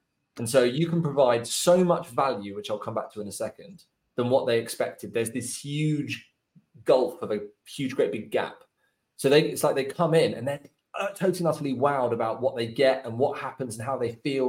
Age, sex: 20-39, male